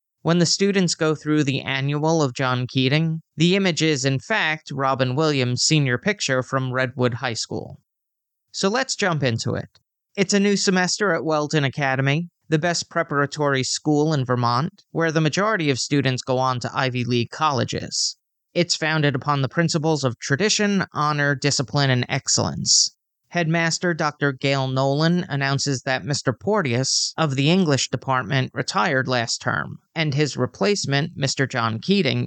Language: English